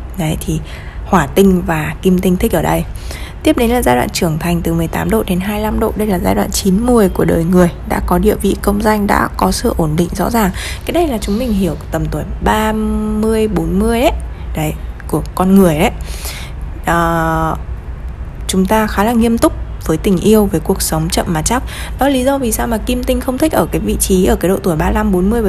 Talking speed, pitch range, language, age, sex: 230 wpm, 165-215 Hz, Vietnamese, 20-39, female